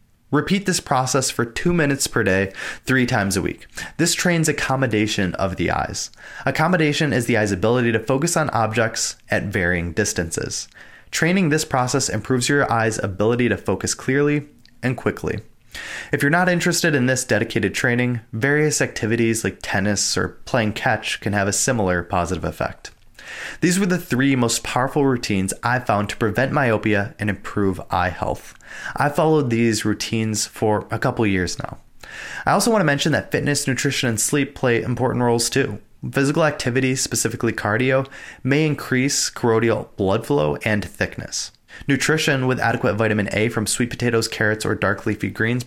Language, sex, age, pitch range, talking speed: English, male, 20-39, 105-140 Hz, 165 wpm